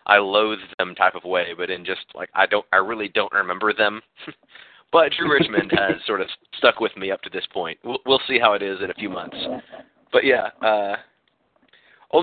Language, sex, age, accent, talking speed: English, male, 30-49, American, 215 wpm